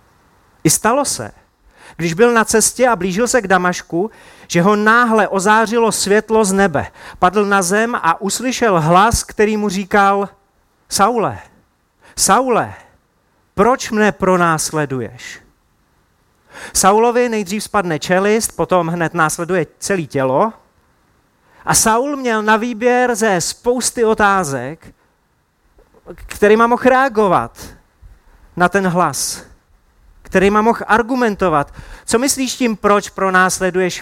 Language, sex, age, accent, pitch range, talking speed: Czech, male, 30-49, native, 180-235 Hz, 115 wpm